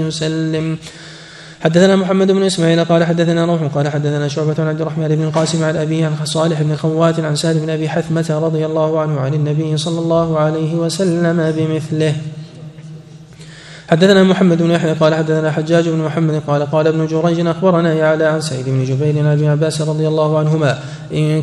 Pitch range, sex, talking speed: 155-165 Hz, male, 180 wpm